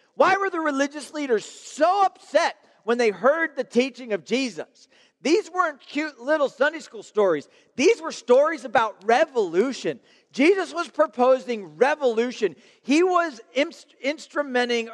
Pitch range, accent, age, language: 225-290 Hz, American, 40-59, English